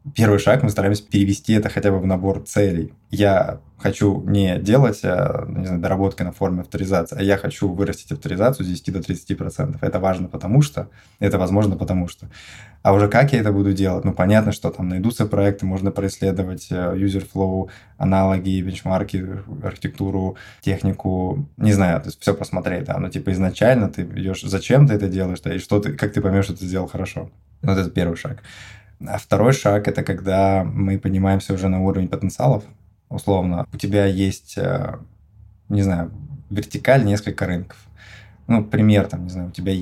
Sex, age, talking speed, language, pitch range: male, 20-39, 175 wpm, Russian, 95-105 Hz